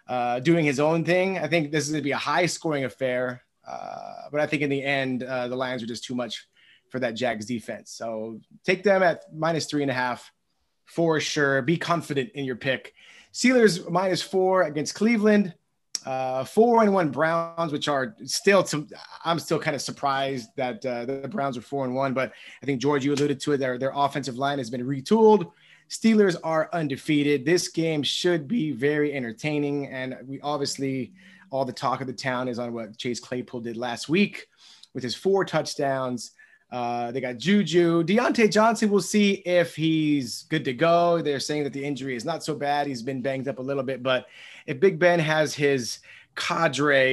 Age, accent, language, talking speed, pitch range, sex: 30-49, American, English, 200 wpm, 130-170 Hz, male